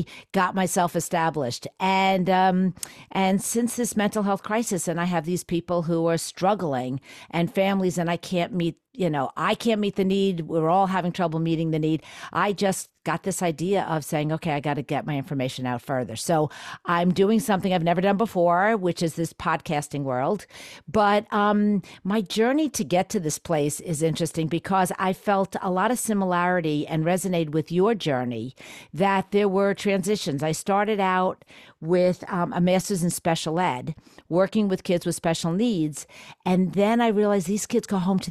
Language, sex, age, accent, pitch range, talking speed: English, female, 50-69, American, 160-195 Hz, 190 wpm